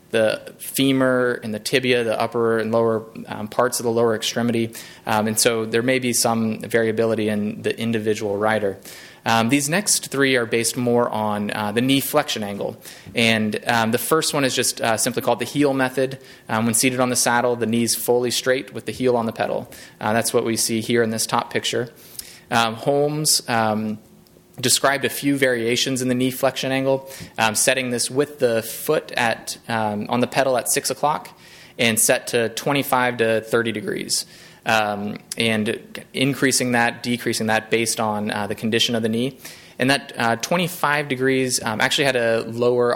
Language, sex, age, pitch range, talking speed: English, male, 20-39, 110-130 Hz, 190 wpm